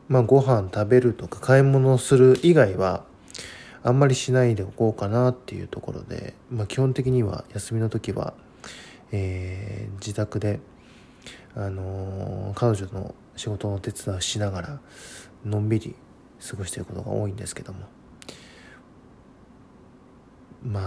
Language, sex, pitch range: Japanese, male, 100-130 Hz